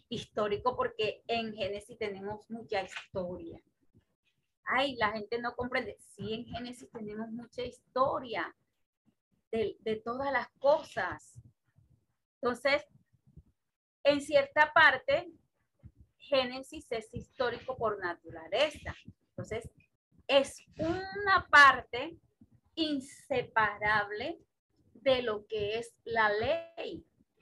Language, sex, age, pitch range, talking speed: Spanish, female, 30-49, 215-270 Hz, 95 wpm